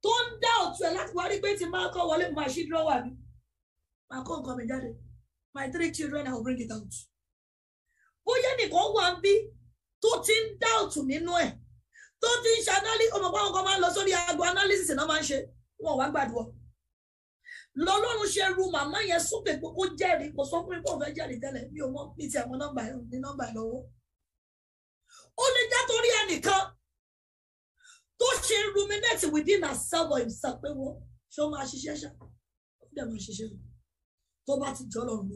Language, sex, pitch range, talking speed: English, female, 275-405 Hz, 80 wpm